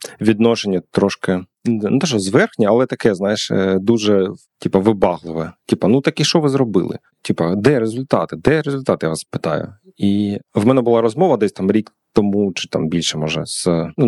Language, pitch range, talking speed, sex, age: Ukrainian, 95-125 Hz, 180 wpm, male, 30-49